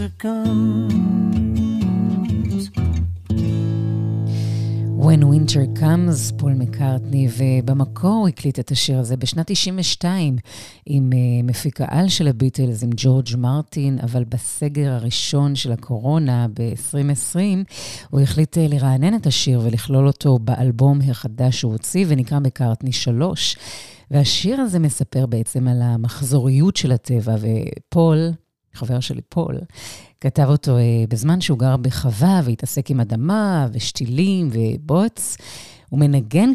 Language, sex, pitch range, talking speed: Hebrew, female, 120-155 Hz, 110 wpm